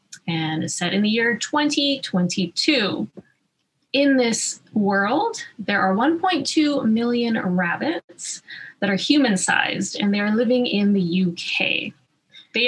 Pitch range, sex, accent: 185-250 Hz, female, American